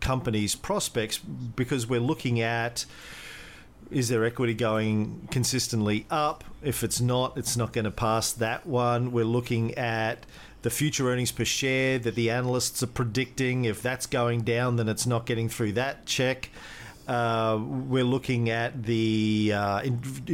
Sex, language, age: male, English, 40-59